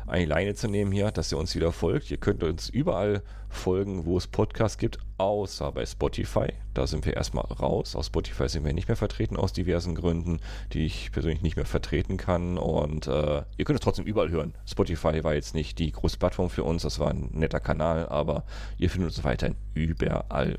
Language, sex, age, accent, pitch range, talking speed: German, male, 40-59, German, 80-100 Hz, 210 wpm